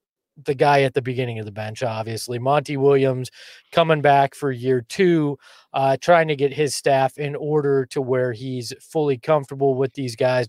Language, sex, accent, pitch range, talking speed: English, male, American, 125-150 Hz, 185 wpm